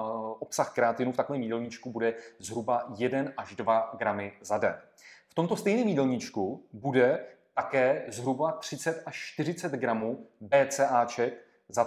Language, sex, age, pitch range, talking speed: Czech, male, 30-49, 115-150 Hz, 130 wpm